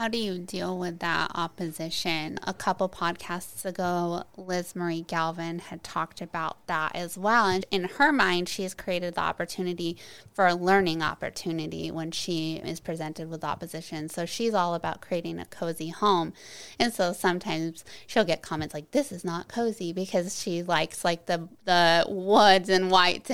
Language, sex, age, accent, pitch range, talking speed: English, female, 20-39, American, 170-195 Hz, 175 wpm